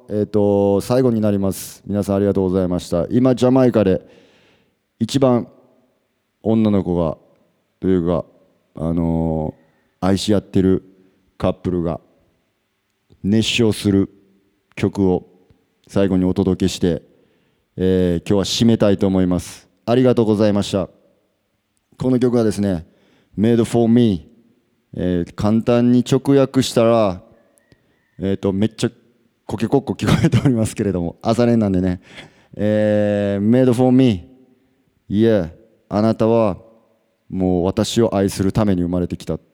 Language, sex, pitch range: English, male, 95-115 Hz